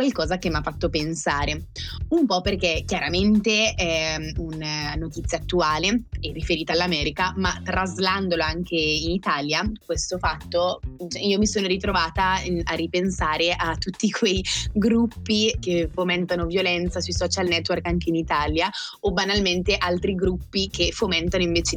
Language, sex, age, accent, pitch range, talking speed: Italian, female, 20-39, native, 170-195 Hz, 140 wpm